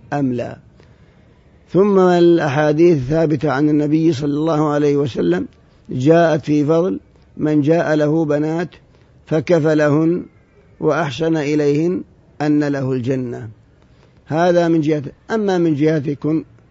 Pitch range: 145-155 Hz